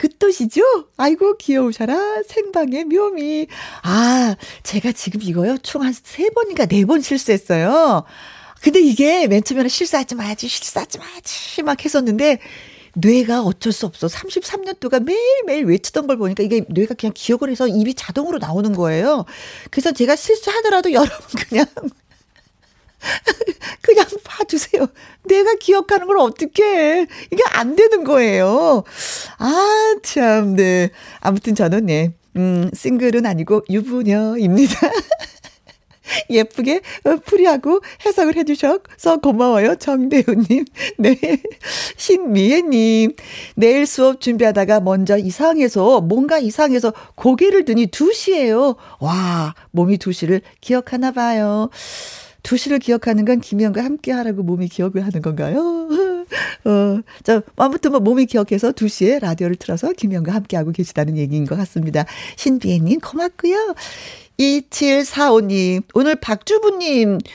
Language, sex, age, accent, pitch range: Korean, female, 40-59, native, 210-320 Hz